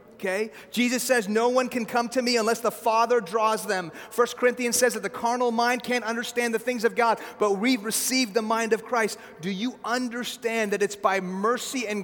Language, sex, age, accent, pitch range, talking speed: English, male, 30-49, American, 185-230 Hz, 210 wpm